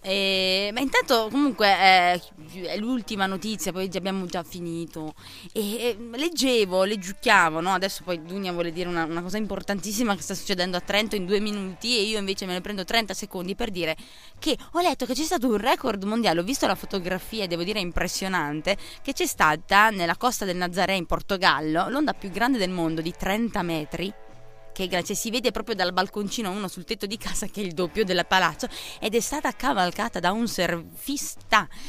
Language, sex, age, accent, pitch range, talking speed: Italian, female, 20-39, native, 180-235 Hz, 190 wpm